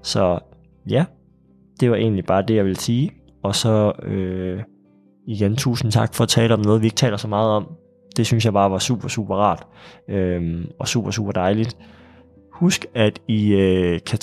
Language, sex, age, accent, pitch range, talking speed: Danish, male, 20-39, native, 95-125 Hz, 190 wpm